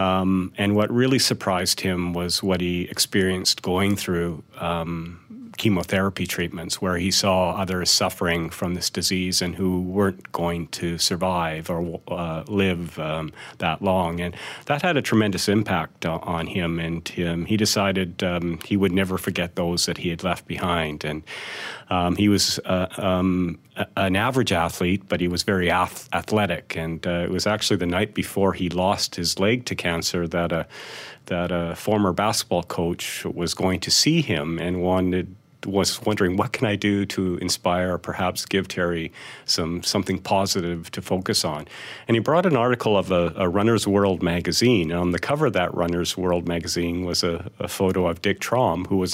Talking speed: 180 wpm